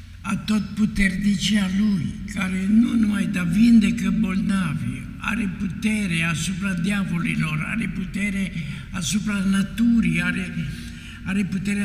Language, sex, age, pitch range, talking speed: Romanian, male, 60-79, 170-205 Hz, 105 wpm